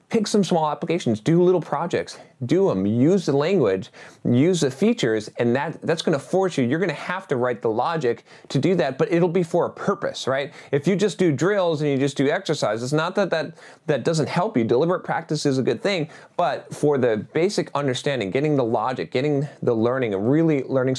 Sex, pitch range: male, 125-165 Hz